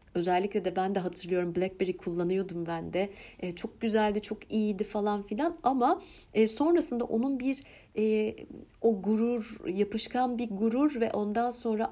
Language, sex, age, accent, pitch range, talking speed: Turkish, female, 60-79, native, 195-235 Hz, 150 wpm